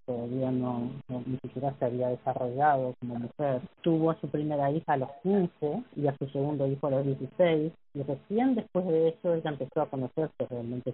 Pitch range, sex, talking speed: 130-155 Hz, female, 185 wpm